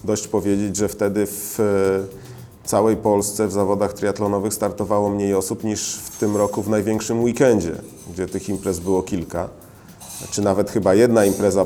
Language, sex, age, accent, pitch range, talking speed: Polish, male, 40-59, native, 100-115 Hz, 160 wpm